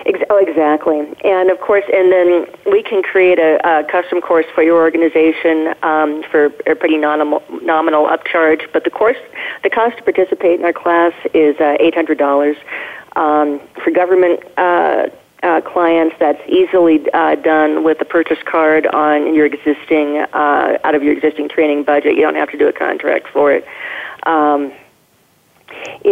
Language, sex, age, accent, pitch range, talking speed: English, female, 40-59, American, 150-180 Hz, 165 wpm